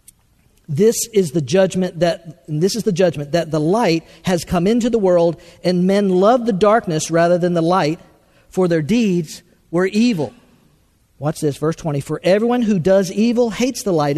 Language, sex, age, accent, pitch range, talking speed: English, male, 50-69, American, 150-185 Hz, 185 wpm